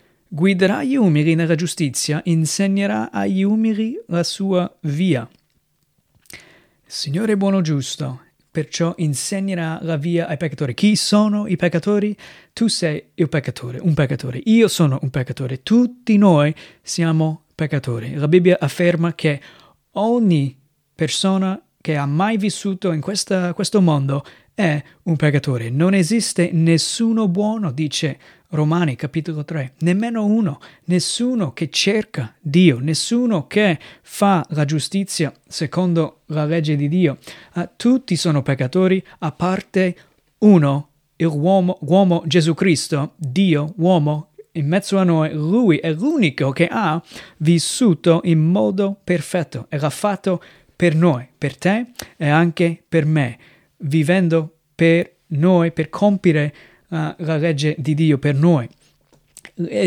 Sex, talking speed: male, 130 wpm